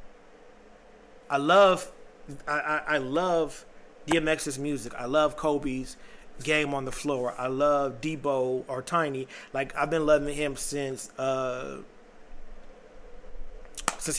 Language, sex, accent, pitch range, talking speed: English, male, American, 140-170 Hz, 115 wpm